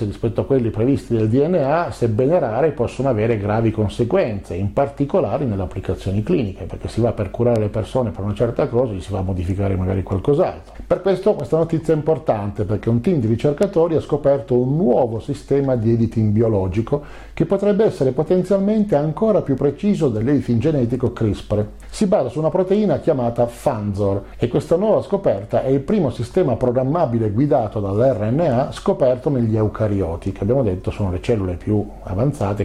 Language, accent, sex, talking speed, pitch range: Italian, native, male, 170 wpm, 105-145 Hz